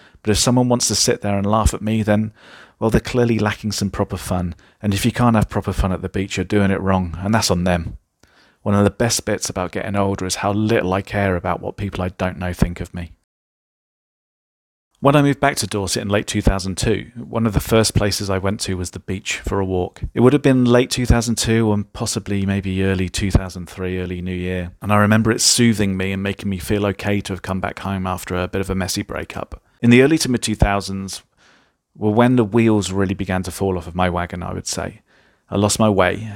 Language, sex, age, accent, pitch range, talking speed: English, male, 40-59, British, 95-105 Hz, 235 wpm